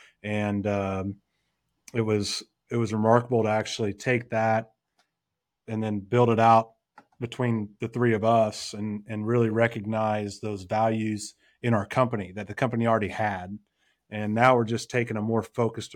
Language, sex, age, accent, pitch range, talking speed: English, male, 30-49, American, 105-120 Hz, 160 wpm